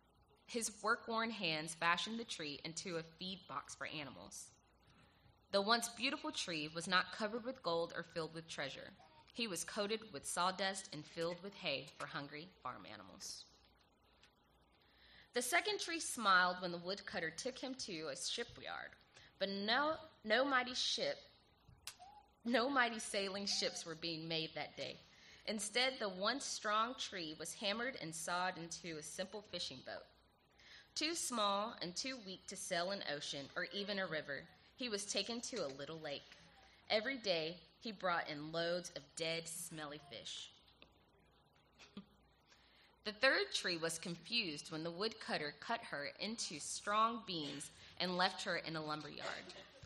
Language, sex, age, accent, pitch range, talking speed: English, female, 20-39, American, 155-225 Hz, 150 wpm